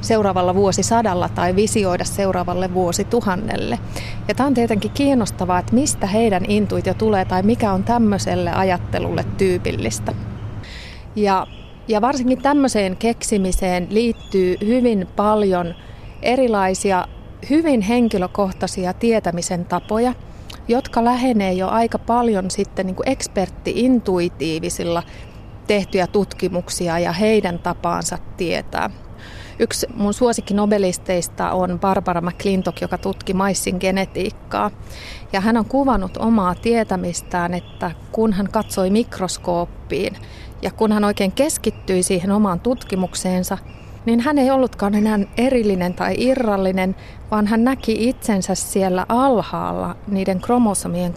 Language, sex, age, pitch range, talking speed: Finnish, female, 30-49, 180-225 Hz, 110 wpm